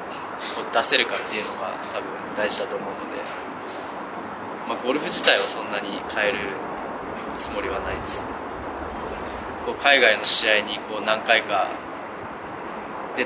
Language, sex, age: Japanese, male, 20-39